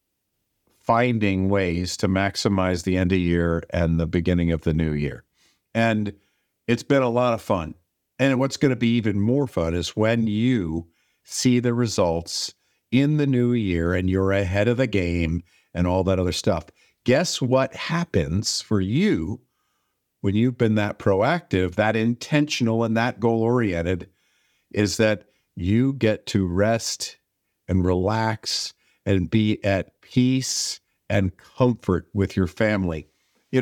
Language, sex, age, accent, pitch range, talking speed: English, male, 50-69, American, 95-125 Hz, 150 wpm